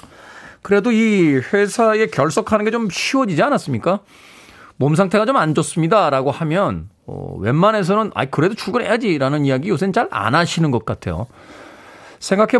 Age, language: 40-59, Korean